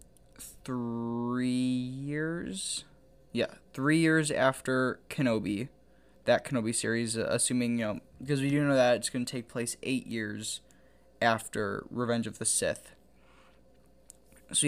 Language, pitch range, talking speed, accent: English, 115-135 Hz, 125 wpm, American